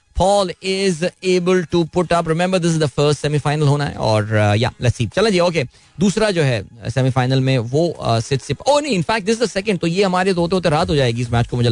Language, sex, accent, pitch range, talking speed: Hindi, male, native, 125-180 Hz, 200 wpm